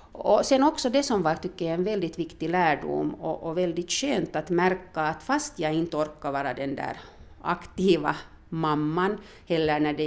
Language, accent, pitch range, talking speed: Swedish, Finnish, 155-195 Hz, 185 wpm